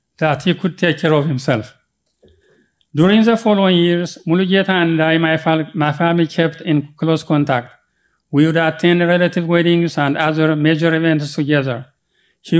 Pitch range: 145-170 Hz